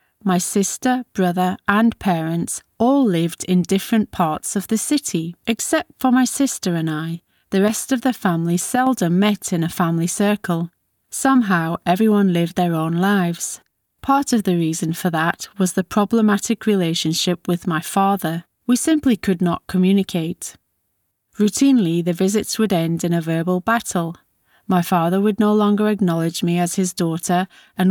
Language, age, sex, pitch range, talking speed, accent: English, 30-49, female, 170-210 Hz, 160 wpm, British